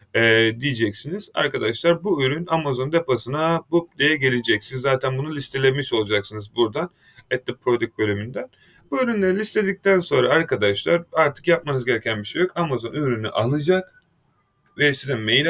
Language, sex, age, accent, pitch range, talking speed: Turkish, male, 30-49, native, 120-165 Hz, 145 wpm